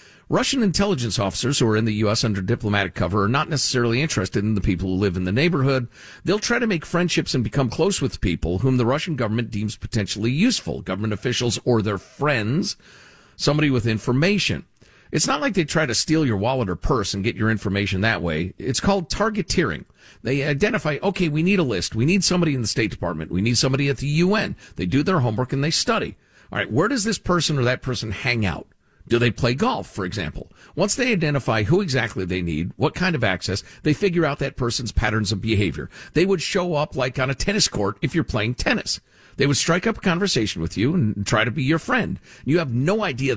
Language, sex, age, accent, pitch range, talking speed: English, male, 50-69, American, 105-155 Hz, 225 wpm